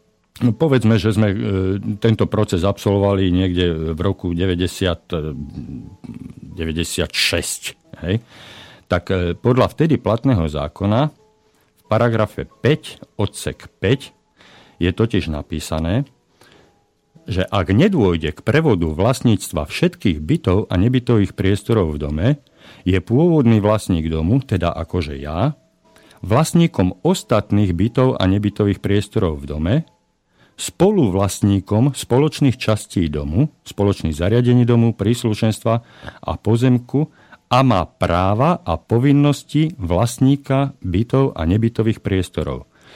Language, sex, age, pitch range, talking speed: Slovak, male, 50-69, 95-130 Hz, 100 wpm